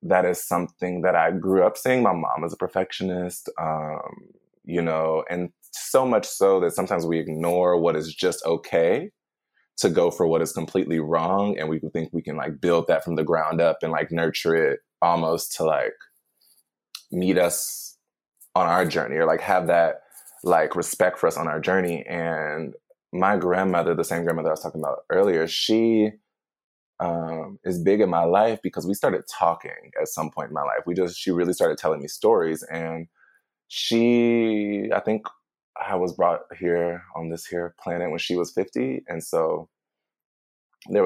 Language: English